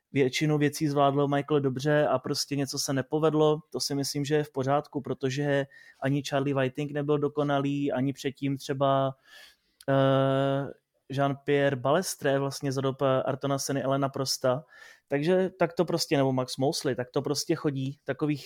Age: 20-39